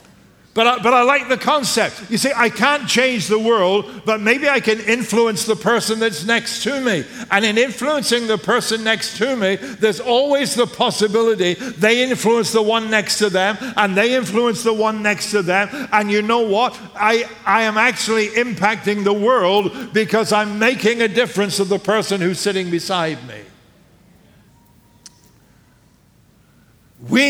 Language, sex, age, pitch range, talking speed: English, male, 60-79, 155-225 Hz, 165 wpm